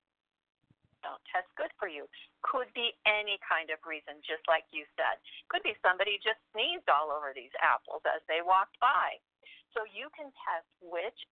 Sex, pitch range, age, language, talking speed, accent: female, 165-230 Hz, 50-69, English, 175 wpm, American